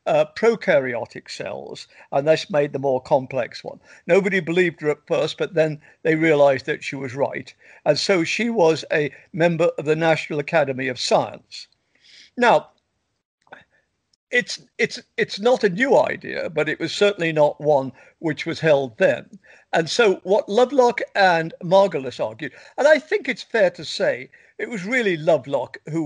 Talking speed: 170 wpm